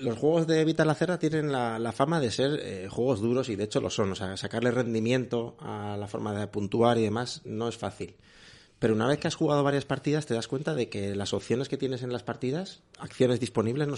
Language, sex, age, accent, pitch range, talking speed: Spanish, male, 30-49, Spanish, 110-135 Hz, 235 wpm